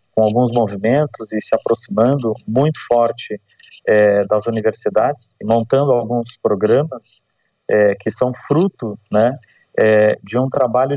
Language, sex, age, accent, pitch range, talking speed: Portuguese, male, 30-49, Brazilian, 115-150 Hz, 130 wpm